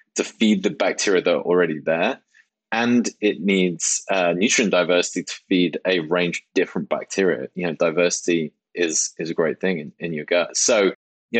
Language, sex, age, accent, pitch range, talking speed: English, male, 20-39, British, 85-100 Hz, 185 wpm